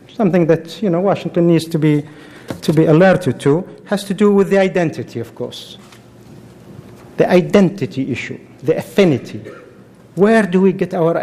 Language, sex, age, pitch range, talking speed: English, male, 50-69, 145-185 Hz, 160 wpm